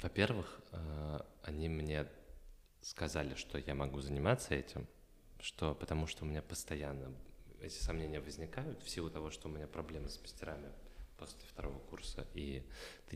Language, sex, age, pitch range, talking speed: Russian, male, 20-39, 75-90 Hz, 140 wpm